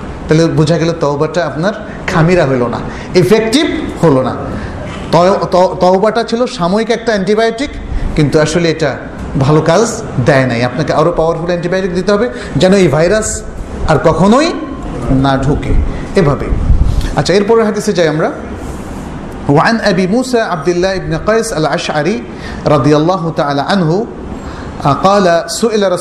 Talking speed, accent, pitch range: 90 wpm, native, 150-200 Hz